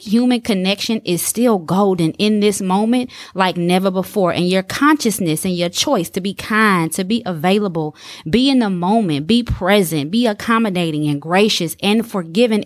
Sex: female